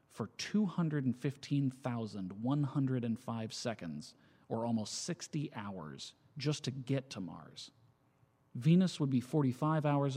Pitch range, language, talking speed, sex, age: 120-150 Hz, English, 100 wpm, male, 40-59